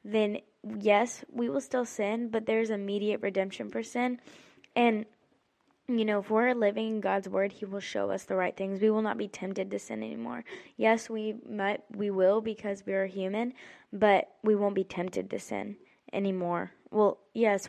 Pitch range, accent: 190-220 Hz, American